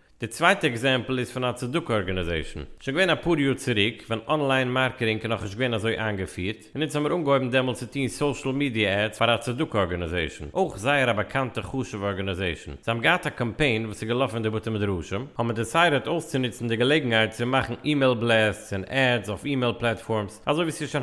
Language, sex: English, male